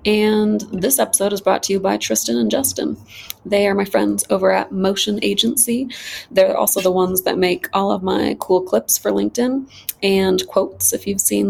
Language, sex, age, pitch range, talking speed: English, female, 20-39, 145-205 Hz, 195 wpm